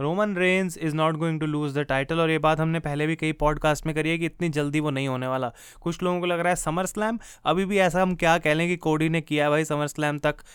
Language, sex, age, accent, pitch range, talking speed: Hindi, male, 20-39, native, 150-180 Hz, 285 wpm